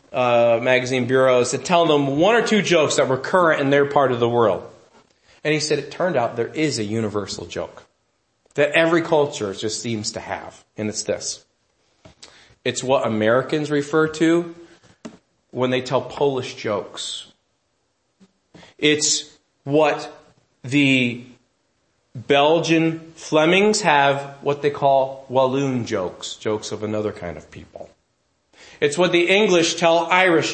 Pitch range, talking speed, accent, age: 130-200 Hz, 145 wpm, American, 40-59